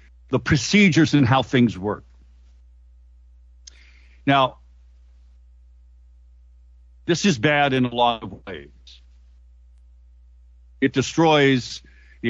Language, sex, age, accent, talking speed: English, male, 60-79, American, 90 wpm